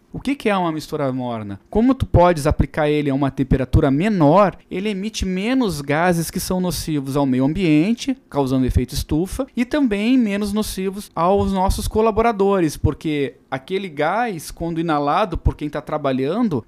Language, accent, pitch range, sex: Portuguese, Brazilian, 140-195 Hz, male